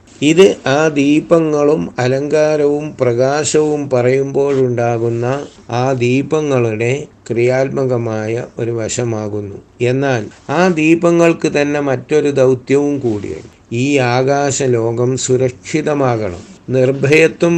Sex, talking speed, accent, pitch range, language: male, 75 wpm, native, 120-145 Hz, Malayalam